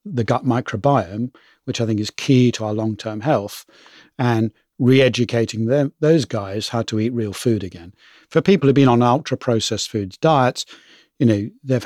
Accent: British